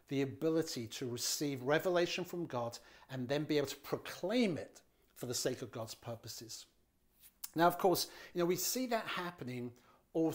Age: 50-69